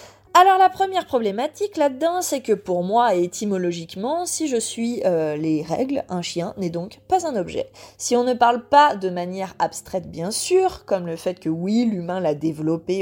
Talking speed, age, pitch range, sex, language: 190 wpm, 20-39, 175-255 Hz, female, French